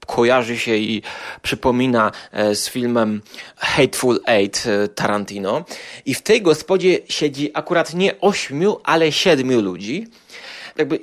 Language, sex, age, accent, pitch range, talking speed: Polish, male, 30-49, native, 115-160 Hz, 115 wpm